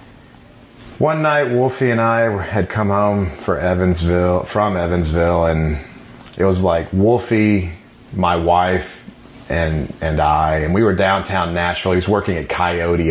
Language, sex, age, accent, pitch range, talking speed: English, male, 30-49, American, 90-120 Hz, 145 wpm